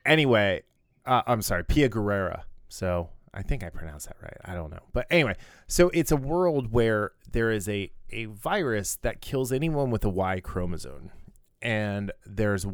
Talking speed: 175 wpm